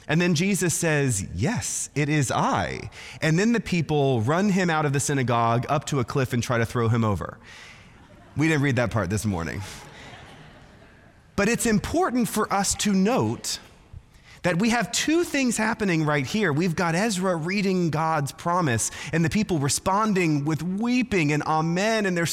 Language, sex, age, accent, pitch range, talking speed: English, male, 30-49, American, 125-185 Hz, 175 wpm